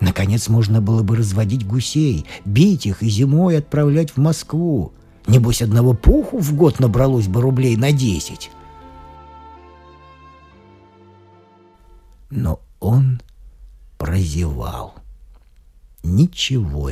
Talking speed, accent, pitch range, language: 95 wpm, native, 80-125 Hz, Russian